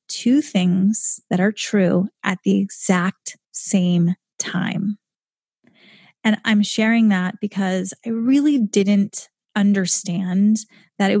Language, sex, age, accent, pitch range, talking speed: English, female, 20-39, American, 190-215 Hz, 115 wpm